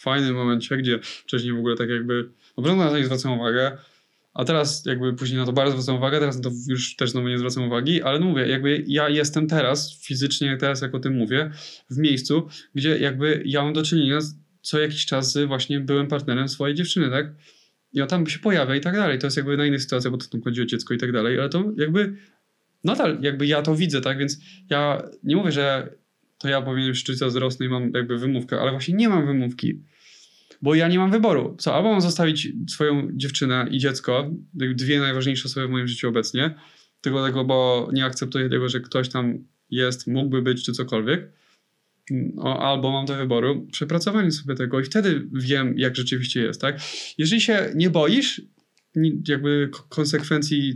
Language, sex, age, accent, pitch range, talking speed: Polish, male, 20-39, native, 130-150 Hz, 200 wpm